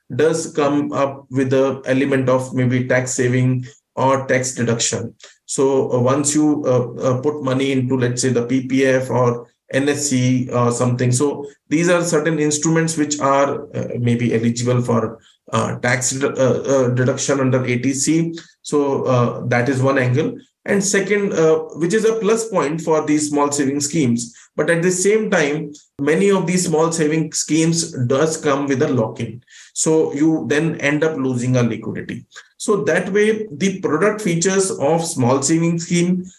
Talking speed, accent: 165 wpm, Indian